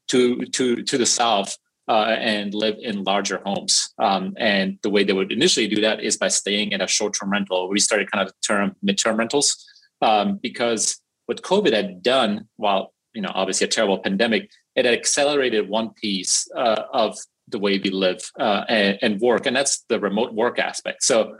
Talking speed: 195 wpm